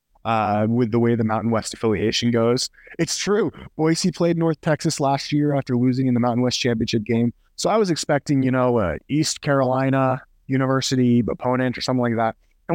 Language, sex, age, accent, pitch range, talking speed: English, male, 30-49, American, 100-140 Hz, 190 wpm